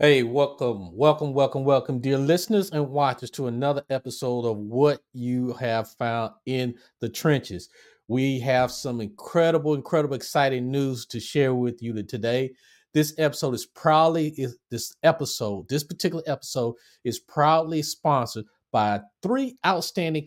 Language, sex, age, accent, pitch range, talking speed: English, male, 50-69, American, 120-155 Hz, 140 wpm